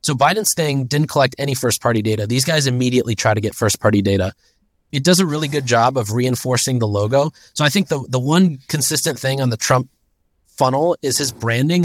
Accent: American